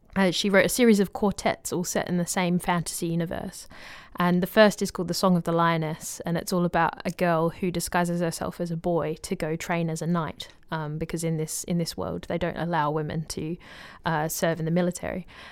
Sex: female